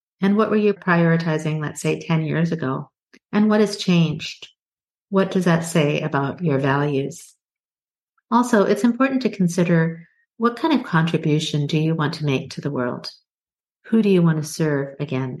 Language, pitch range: English, 155-195 Hz